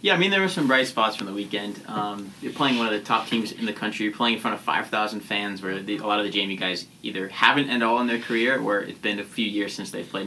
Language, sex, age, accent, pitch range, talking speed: English, male, 20-39, American, 105-140 Hz, 310 wpm